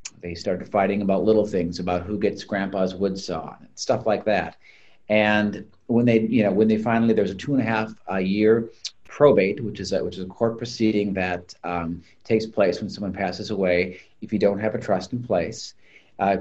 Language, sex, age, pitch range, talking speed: English, male, 40-59, 95-110 Hz, 215 wpm